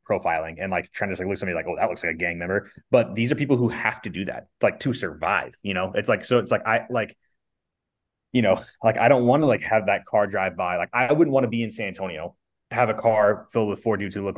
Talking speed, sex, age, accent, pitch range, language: 290 wpm, male, 20-39, American, 100-125 Hz, English